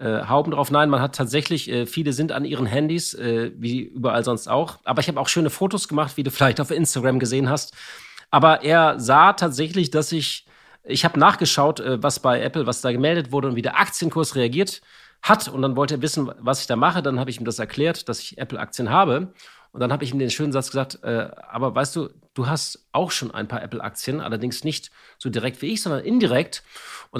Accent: German